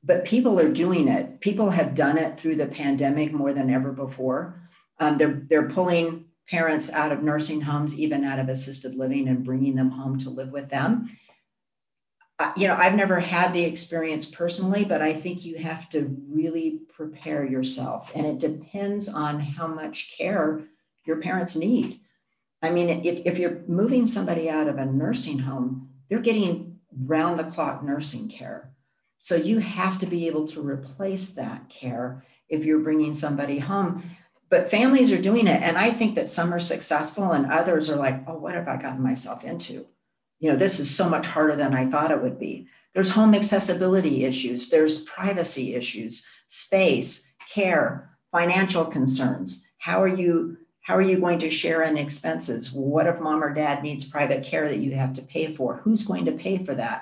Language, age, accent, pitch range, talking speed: English, 50-69, American, 140-180 Hz, 185 wpm